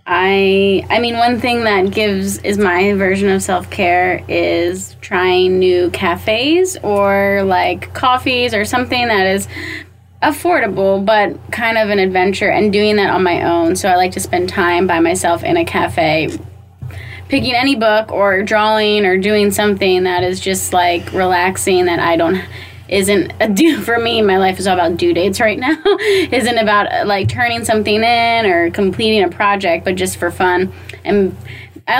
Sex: female